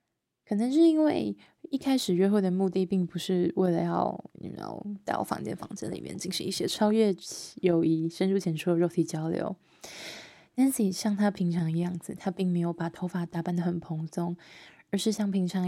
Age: 20-39